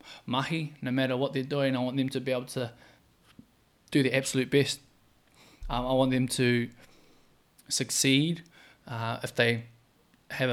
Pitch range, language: 125-150 Hz, English